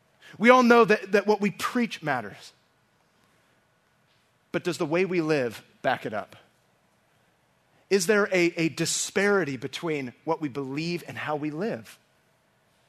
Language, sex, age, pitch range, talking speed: English, male, 30-49, 150-235 Hz, 145 wpm